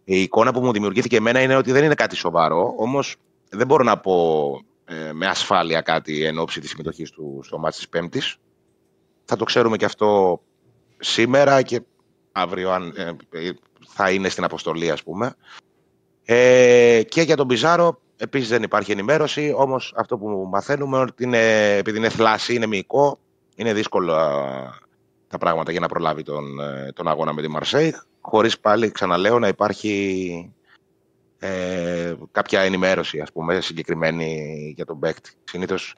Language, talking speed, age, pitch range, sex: Greek, 155 wpm, 30-49, 80-125 Hz, male